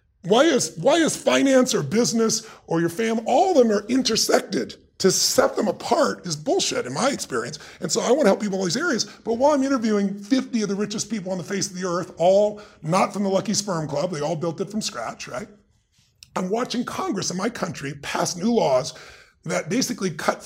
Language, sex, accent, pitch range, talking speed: English, female, American, 165-225 Hz, 220 wpm